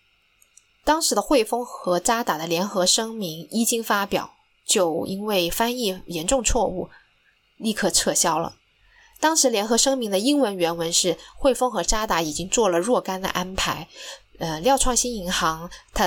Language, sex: Chinese, female